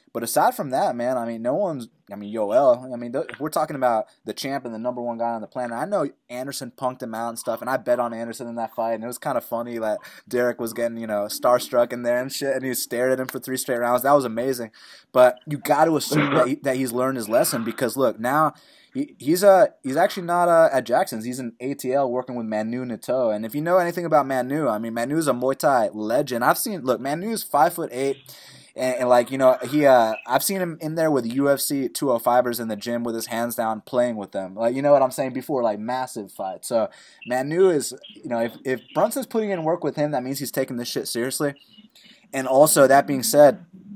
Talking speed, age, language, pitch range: 255 wpm, 20-39, English, 120-145 Hz